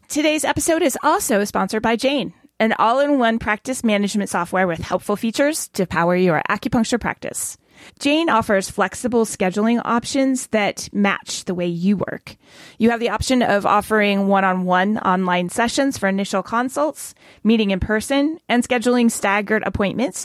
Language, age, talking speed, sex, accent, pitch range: English, 30-49, 150 wpm, female, American, 190-245 Hz